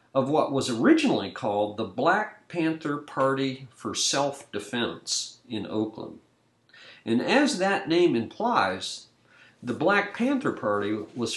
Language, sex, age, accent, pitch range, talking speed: English, male, 50-69, American, 110-170 Hz, 120 wpm